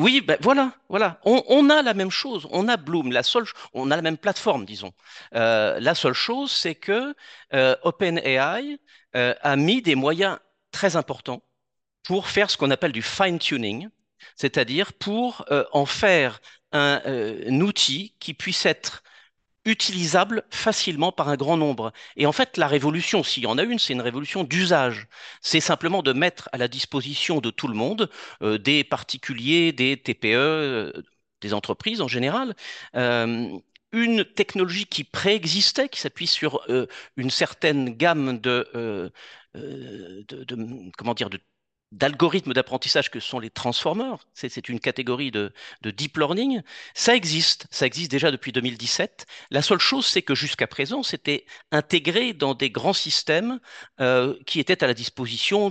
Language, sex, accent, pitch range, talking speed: French, male, French, 130-195 Hz, 165 wpm